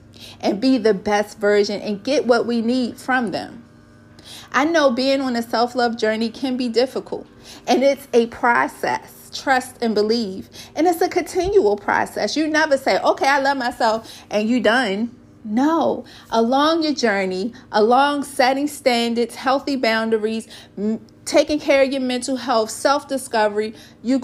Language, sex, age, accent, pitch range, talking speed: English, female, 40-59, American, 225-285 Hz, 150 wpm